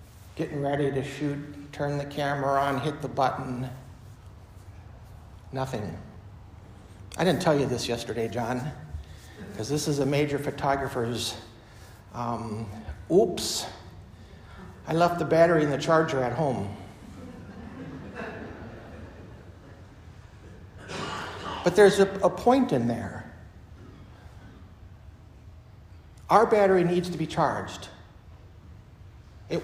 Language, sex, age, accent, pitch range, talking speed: English, male, 60-79, American, 95-155 Hz, 100 wpm